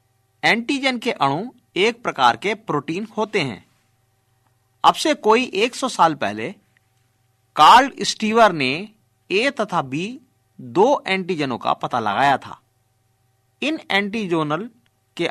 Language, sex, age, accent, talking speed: Hindi, male, 50-69, native, 120 wpm